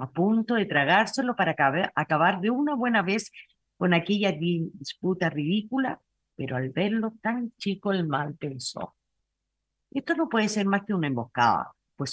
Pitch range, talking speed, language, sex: 135-210 Hz, 155 wpm, Spanish, female